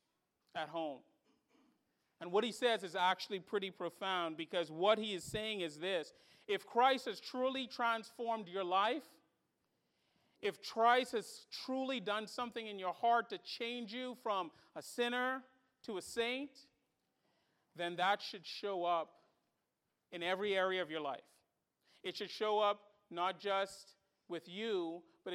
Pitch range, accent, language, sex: 185-240 Hz, American, English, male